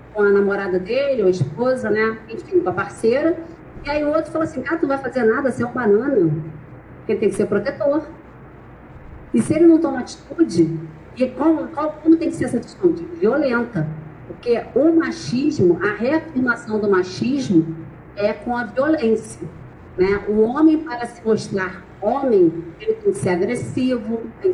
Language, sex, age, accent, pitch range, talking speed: Portuguese, female, 40-59, Brazilian, 185-305 Hz, 180 wpm